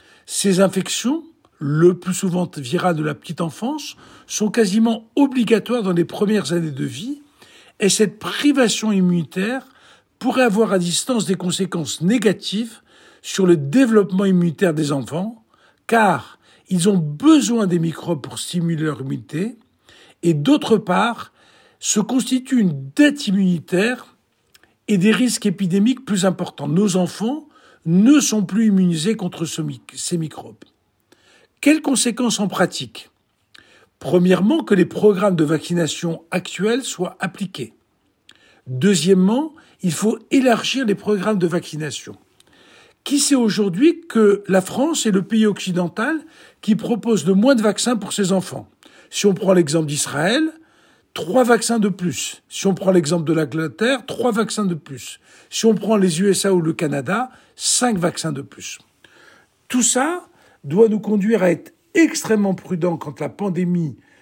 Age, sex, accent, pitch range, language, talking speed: 60-79, male, French, 175-235 Hz, Italian, 140 wpm